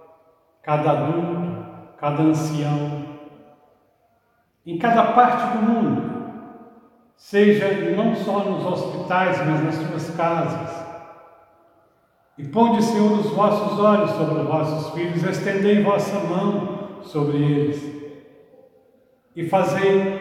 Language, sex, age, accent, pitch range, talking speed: Portuguese, male, 70-89, Brazilian, 145-195 Hz, 105 wpm